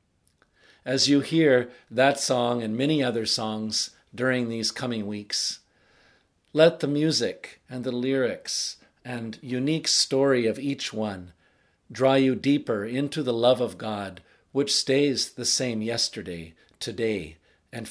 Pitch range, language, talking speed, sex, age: 110-135 Hz, English, 135 wpm, male, 50-69